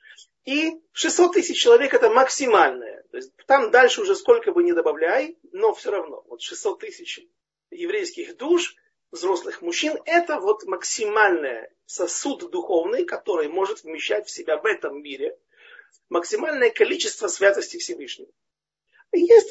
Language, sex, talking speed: Russian, male, 130 wpm